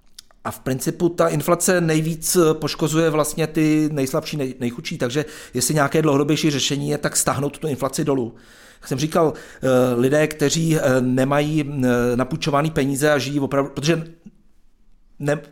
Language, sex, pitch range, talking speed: Czech, male, 135-155 Hz, 140 wpm